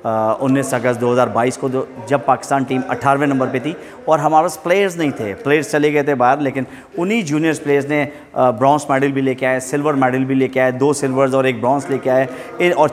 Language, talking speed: Urdu, 225 wpm